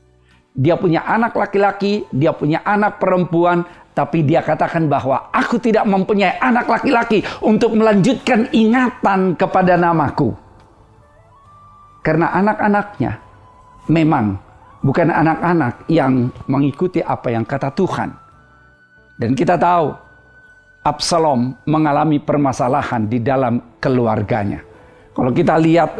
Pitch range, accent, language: 140-195 Hz, native, Indonesian